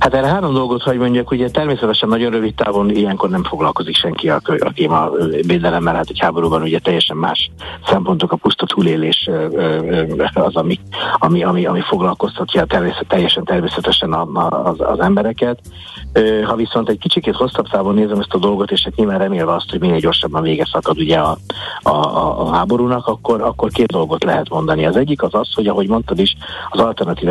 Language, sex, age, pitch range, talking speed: Hungarian, male, 60-79, 85-115 Hz, 175 wpm